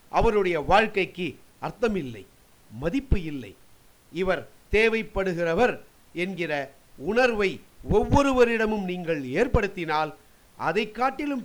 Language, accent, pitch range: Tamil, native, 155-215 Hz